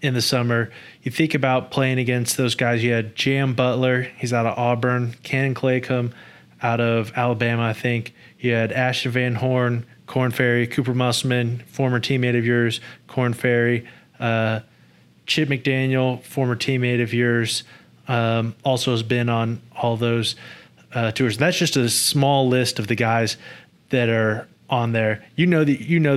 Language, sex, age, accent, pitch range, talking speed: English, male, 20-39, American, 115-130 Hz, 165 wpm